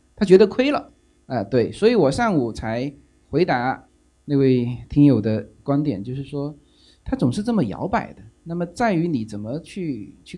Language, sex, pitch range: Chinese, male, 115-190 Hz